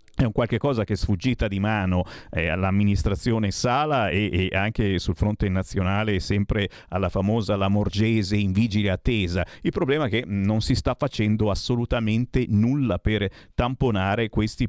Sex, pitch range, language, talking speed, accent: male, 100-130 Hz, Italian, 150 wpm, native